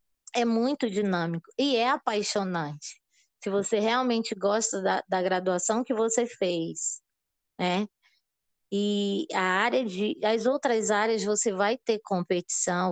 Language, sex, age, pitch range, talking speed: Portuguese, female, 20-39, 180-215 Hz, 130 wpm